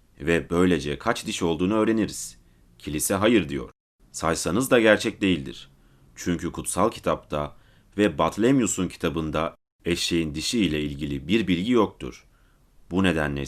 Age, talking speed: 30-49, 125 wpm